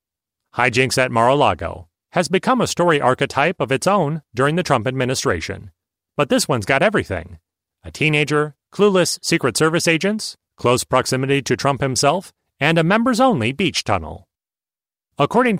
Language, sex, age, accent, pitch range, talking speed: English, male, 30-49, American, 115-170 Hz, 140 wpm